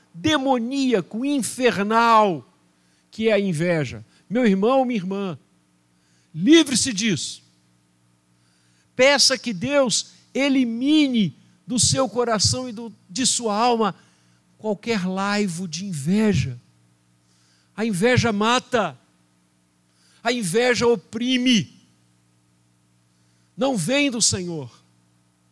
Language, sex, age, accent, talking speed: Portuguese, male, 50-69, Brazilian, 85 wpm